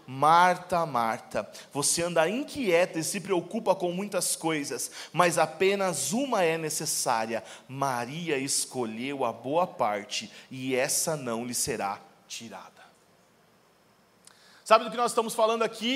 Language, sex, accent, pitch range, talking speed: Portuguese, male, Brazilian, 185-255 Hz, 130 wpm